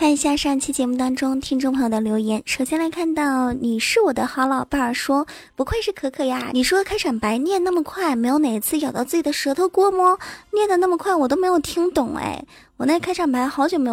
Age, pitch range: 20-39, 255-335 Hz